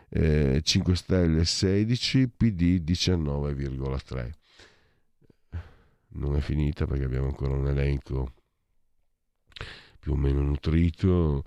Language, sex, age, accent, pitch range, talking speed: Italian, male, 50-69, native, 80-110 Hz, 95 wpm